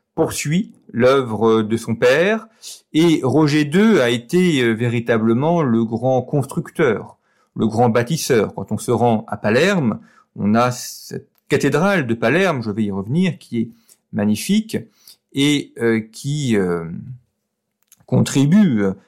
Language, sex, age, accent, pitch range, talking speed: French, male, 40-59, French, 110-155 Hz, 125 wpm